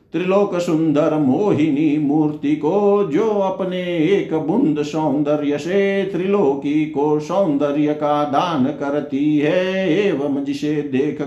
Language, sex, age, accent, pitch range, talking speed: Hindi, male, 50-69, native, 150-195 Hz, 110 wpm